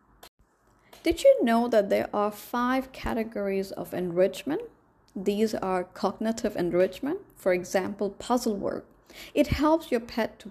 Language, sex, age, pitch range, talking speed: English, female, 30-49, 195-250 Hz, 130 wpm